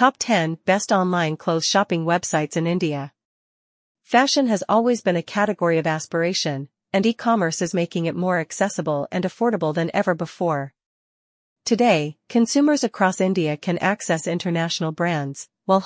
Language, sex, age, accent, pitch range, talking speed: English, female, 40-59, American, 165-200 Hz, 145 wpm